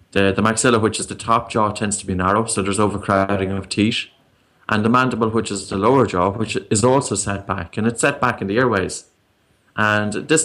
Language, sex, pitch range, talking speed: English, male, 100-125 Hz, 225 wpm